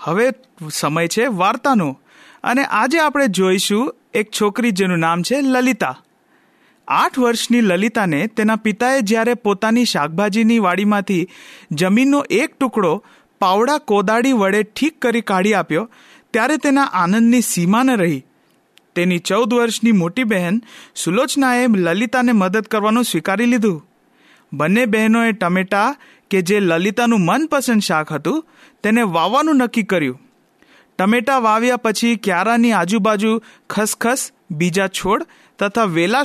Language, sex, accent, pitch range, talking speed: Hindi, male, native, 180-245 Hz, 55 wpm